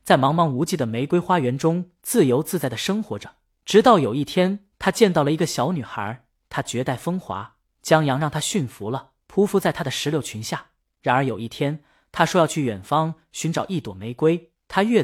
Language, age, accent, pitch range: Chinese, 20-39, native, 125-185 Hz